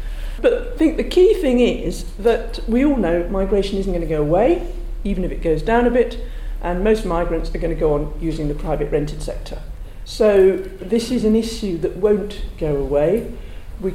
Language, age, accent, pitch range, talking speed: English, 50-69, British, 155-210 Hz, 195 wpm